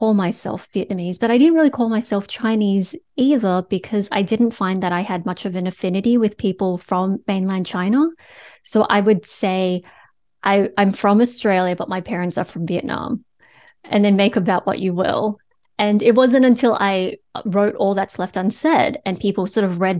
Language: English